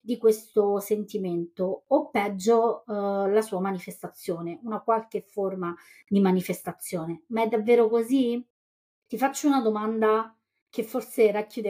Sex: female